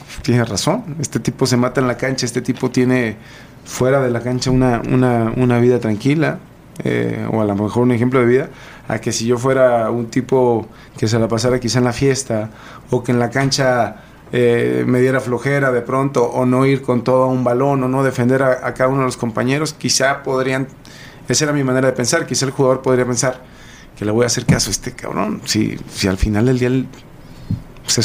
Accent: Mexican